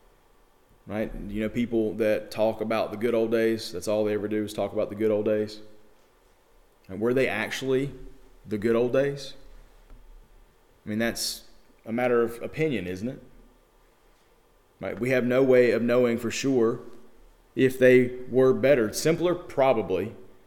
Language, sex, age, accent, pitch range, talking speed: English, male, 30-49, American, 105-125 Hz, 150 wpm